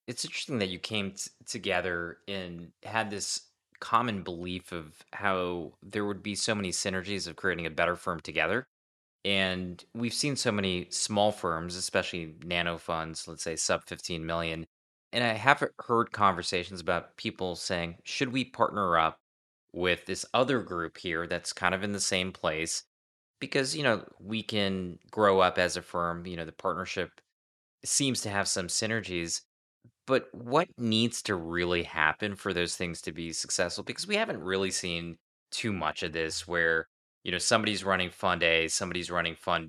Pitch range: 85-100 Hz